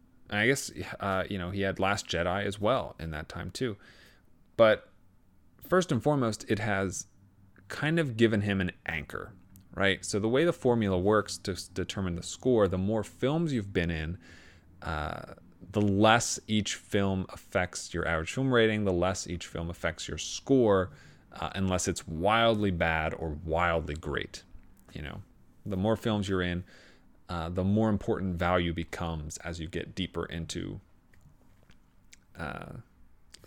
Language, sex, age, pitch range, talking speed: English, male, 30-49, 85-100 Hz, 160 wpm